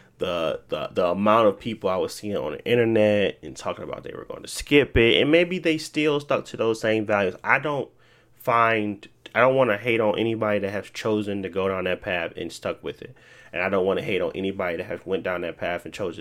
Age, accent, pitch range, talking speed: 30-49, American, 100-115 Hz, 250 wpm